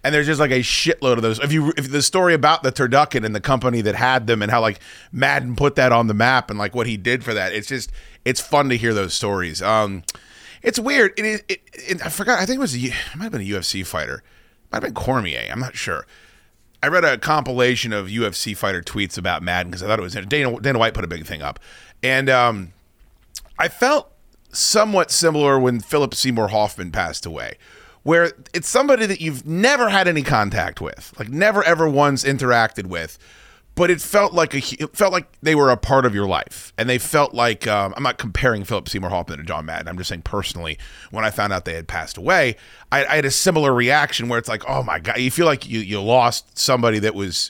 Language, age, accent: English, 30-49, American